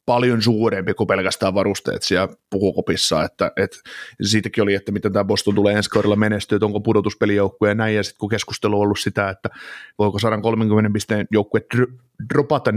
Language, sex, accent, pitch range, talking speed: Finnish, male, native, 105-120 Hz, 170 wpm